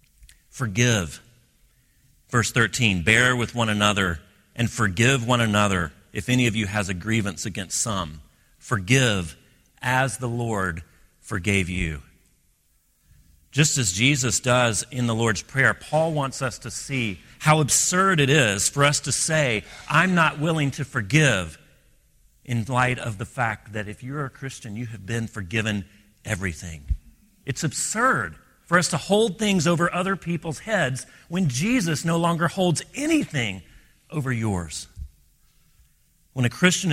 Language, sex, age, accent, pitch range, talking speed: English, male, 40-59, American, 105-145 Hz, 145 wpm